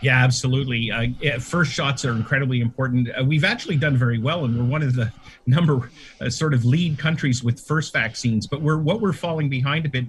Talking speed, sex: 210 wpm, male